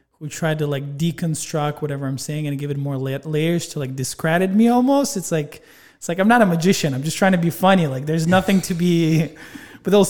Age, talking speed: 20-39, 230 wpm